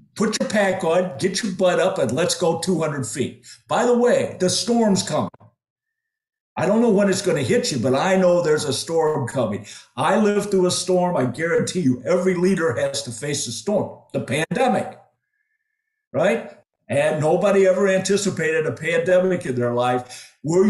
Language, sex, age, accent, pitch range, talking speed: English, male, 50-69, American, 135-195 Hz, 185 wpm